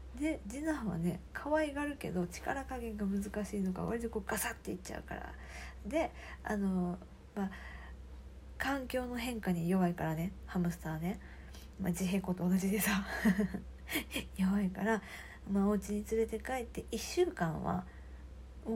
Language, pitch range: Japanese, 175-235 Hz